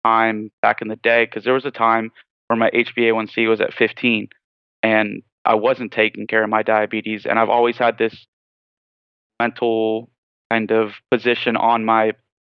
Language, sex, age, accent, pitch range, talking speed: English, male, 30-49, American, 110-115 Hz, 170 wpm